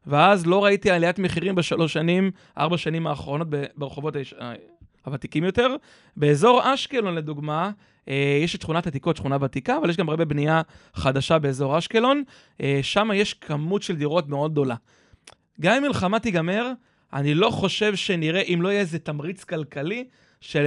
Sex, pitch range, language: male, 145-190 Hz, Hebrew